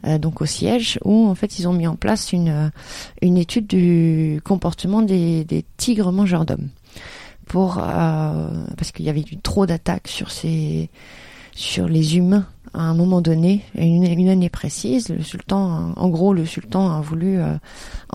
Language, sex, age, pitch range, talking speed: French, female, 30-49, 155-185 Hz, 170 wpm